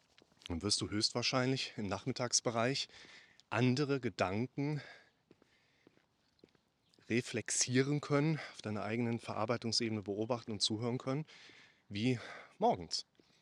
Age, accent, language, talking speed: 30-49, German, German, 90 wpm